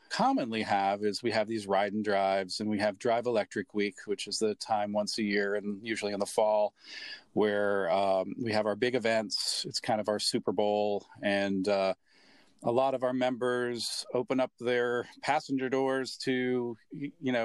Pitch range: 105-125 Hz